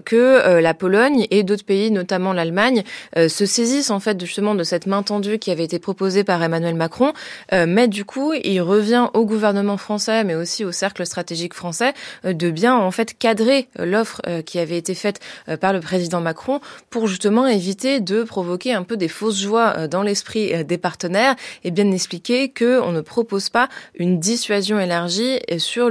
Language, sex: French, female